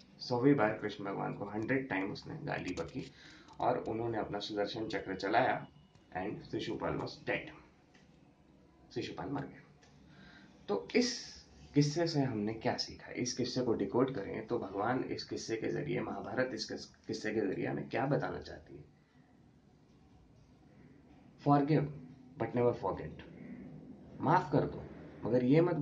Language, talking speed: Hindi, 125 wpm